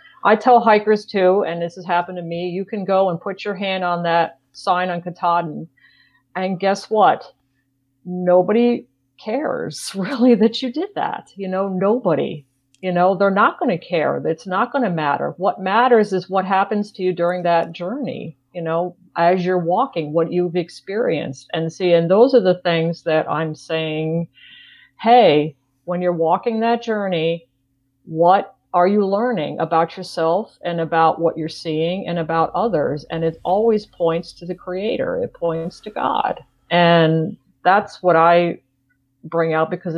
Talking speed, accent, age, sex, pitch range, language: 170 wpm, American, 50-69, female, 165-195 Hz, English